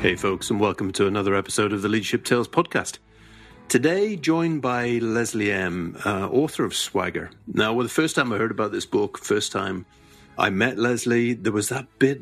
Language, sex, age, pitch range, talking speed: English, male, 50-69, 95-115 Hz, 190 wpm